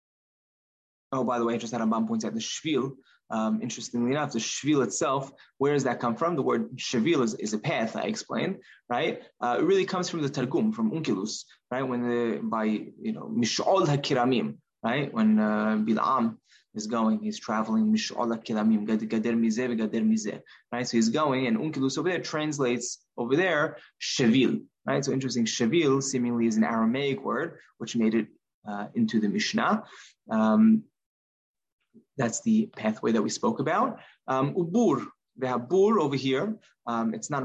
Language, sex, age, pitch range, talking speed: English, male, 20-39, 115-150 Hz, 175 wpm